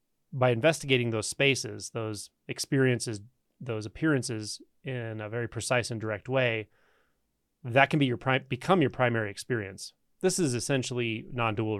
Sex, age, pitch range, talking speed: male, 30-49, 115-140 Hz, 140 wpm